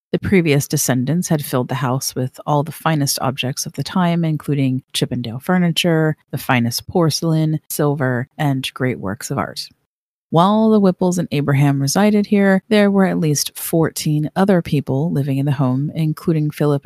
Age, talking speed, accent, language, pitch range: 40-59, 165 wpm, American, English, 140-180 Hz